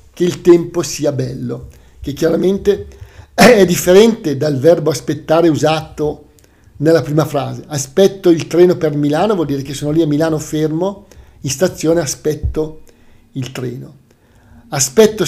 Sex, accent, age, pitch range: male, native, 50-69, 135-185 Hz